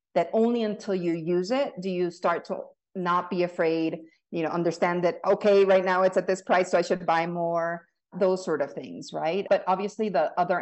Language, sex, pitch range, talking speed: English, female, 160-190 Hz, 215 wpm